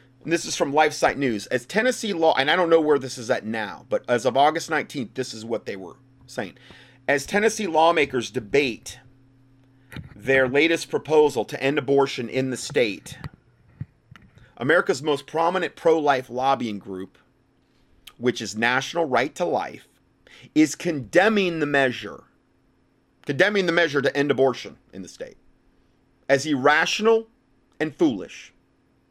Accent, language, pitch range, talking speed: American, English, 130-165 Hz, 145 wpm